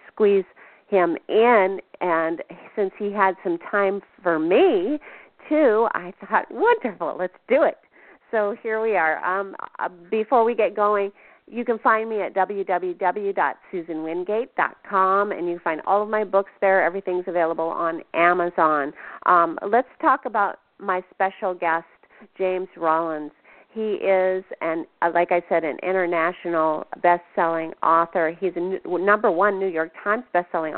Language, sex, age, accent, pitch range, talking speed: English, female, 40-59, American, 165-205 Hz, 140 wpm